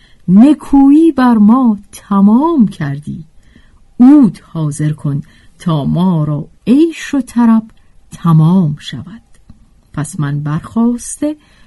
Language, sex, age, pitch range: Persian, female, 50-69, 155-225 Hz